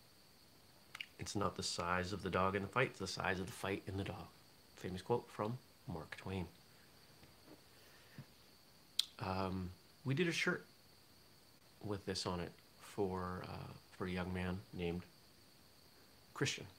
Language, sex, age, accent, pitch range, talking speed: English, male, 40-59, American, 90-110 Hz, 140 wpm